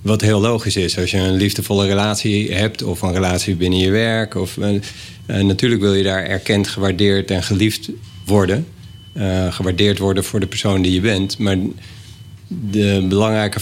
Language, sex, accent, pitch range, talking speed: Dutch, male, Dutch, 95-110 Hz, 175 wpm